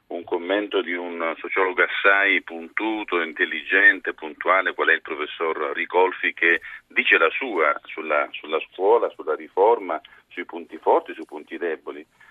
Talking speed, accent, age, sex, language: 140 wpm, native, 40-59, male, Italian